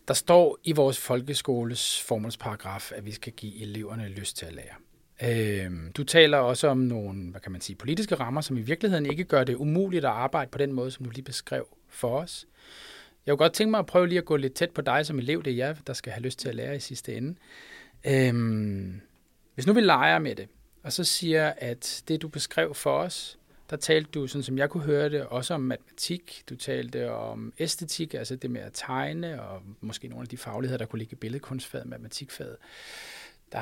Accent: native